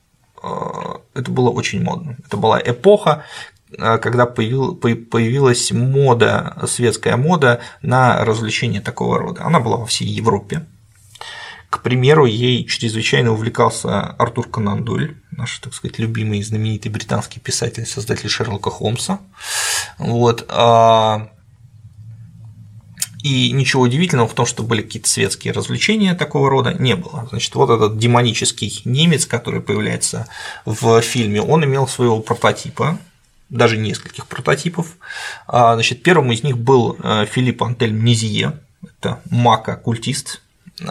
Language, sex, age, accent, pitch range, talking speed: Russian, male, 20-39, native, 110-130 Hz, 115 wpm